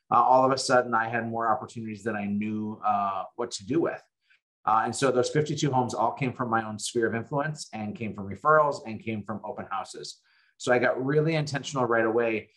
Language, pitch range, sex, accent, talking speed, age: English, 120-150 Hz, male, American, 225 wpm, 30-49